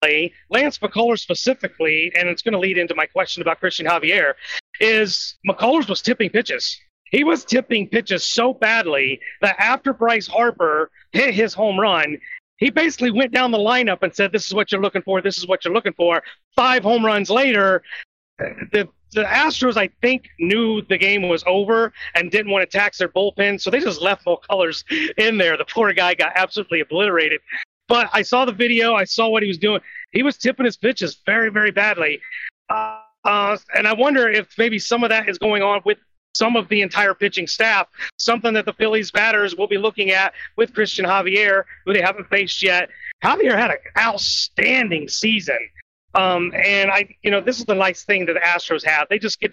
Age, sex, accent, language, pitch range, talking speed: 40-59, male, American, English, 185-230 Hz, 200 wpm